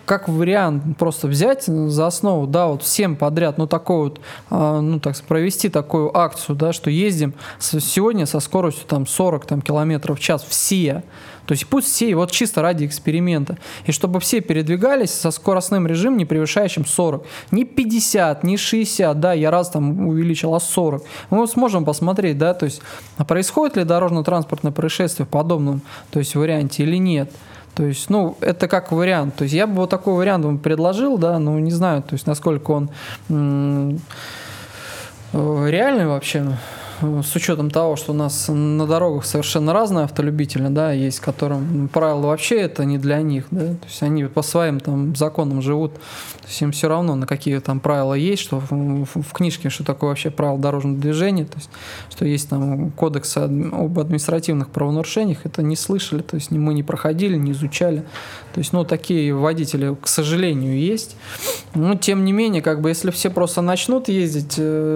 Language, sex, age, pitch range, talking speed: English, male, 20-39, 145-175 Hz, 175 wpm